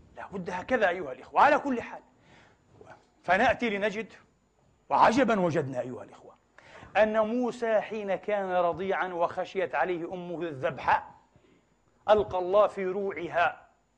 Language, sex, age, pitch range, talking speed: Arabic, male, 40-59, 205-290 Hz, 110 wpm